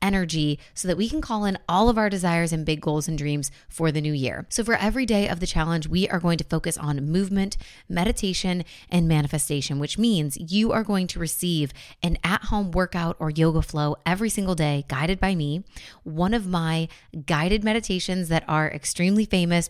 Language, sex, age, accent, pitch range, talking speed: English, female, 20-39, American, 160-195 Hz, 200 wpm